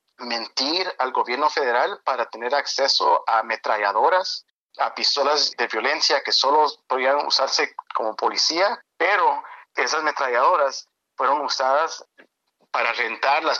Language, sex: English, male